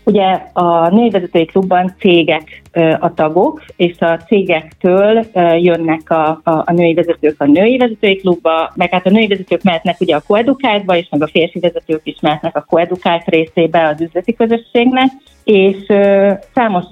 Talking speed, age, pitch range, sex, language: 160 wpm, 40-59, 165-210 Hz, female, Hungarian